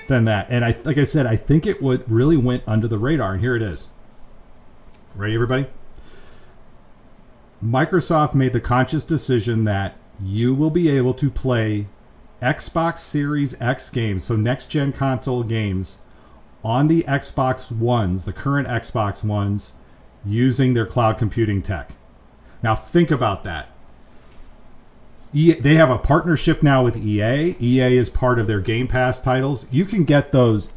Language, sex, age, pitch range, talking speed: English, male, 40-59, 110-145 Hz, 150 wpm